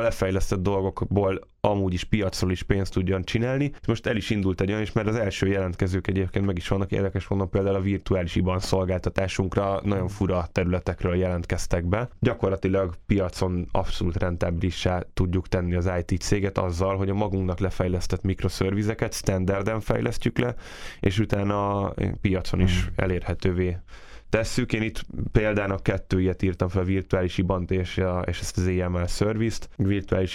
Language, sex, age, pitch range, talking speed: Hungarian, male, 10-29, 90-100 Hz, 150 wpm